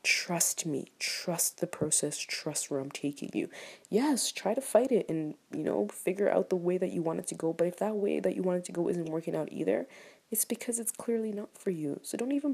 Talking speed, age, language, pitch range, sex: 250 wpm, 20-39, English, 140-210 Hz, female